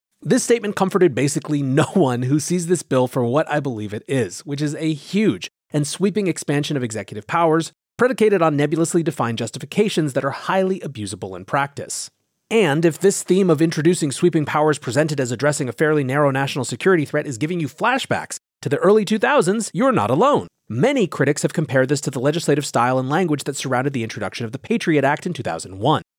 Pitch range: 130-175 Hz